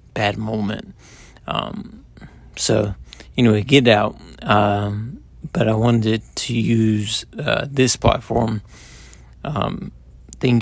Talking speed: 100 wpm